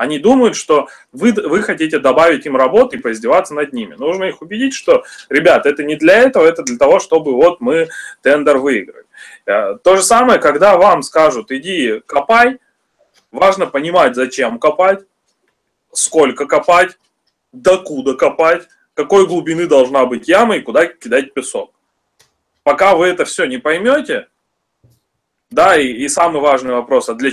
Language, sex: Russian, male